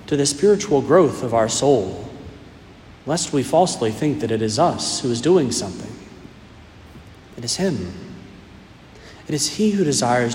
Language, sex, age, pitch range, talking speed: English, male, 40-59, 110-150 Hz, 150 wpm